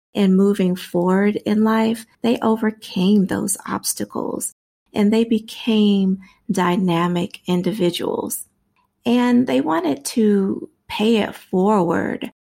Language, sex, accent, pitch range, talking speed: English, female, American, 180-215 Hz, 100 wpm